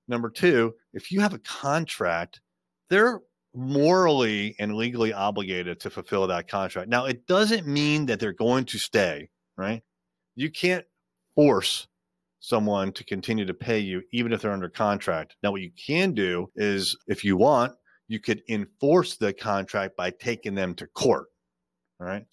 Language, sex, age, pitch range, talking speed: English, male, 30-49, 90-130 Hz, 160 wpm